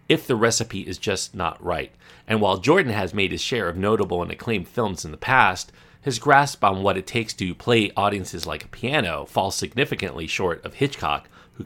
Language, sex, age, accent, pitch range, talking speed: English, male, 40-59, American, 95-125 Hz, 205 wpm